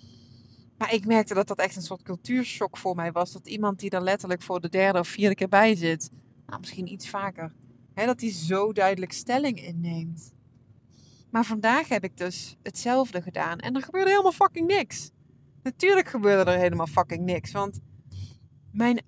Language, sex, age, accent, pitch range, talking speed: Dutch, female, 20-39, Dutch, 140-220 Hz, 180 wpm